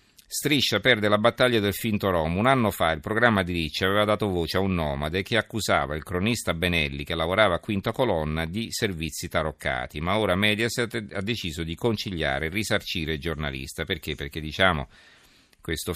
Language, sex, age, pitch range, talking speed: Italian, male, 50-69, 80-105 Hz, 180 wpm